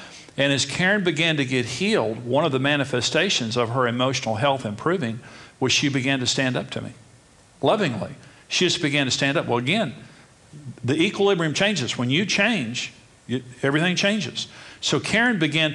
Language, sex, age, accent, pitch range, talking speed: English, male, 50-69, American, 125-155 Hz, 170 wpm